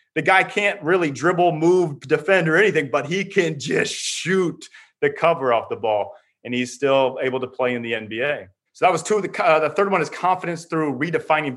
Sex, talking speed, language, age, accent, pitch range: male, 220 wpm, English, 30-49, American, 135-185 Hz